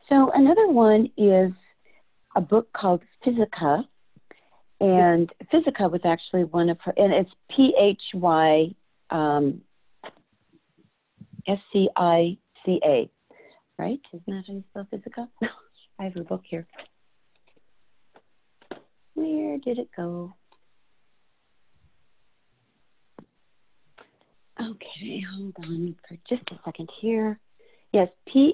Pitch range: 160-210 Hz